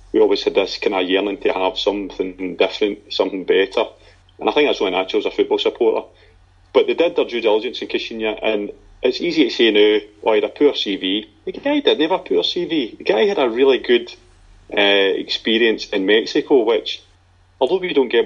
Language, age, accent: English, 30-49, British